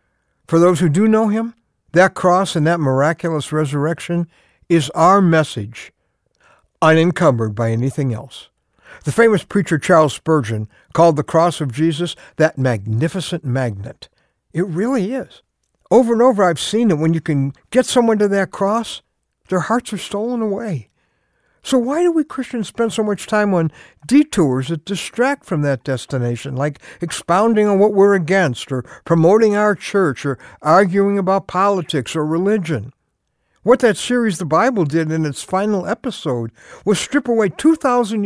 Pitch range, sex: 155-220 Hz, male